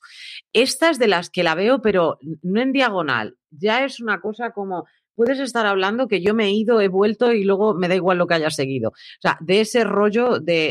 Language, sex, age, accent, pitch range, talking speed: Spanish, female, 40-59, Spanish, 145-225 Hz, 225 wpm